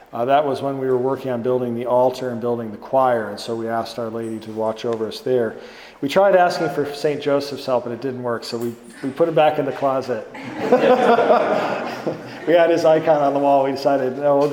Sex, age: male, 40-59